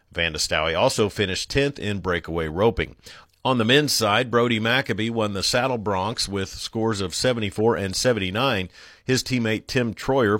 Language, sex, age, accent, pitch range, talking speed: English, male, 50-69, American, 95-120 Hz, 155 wpm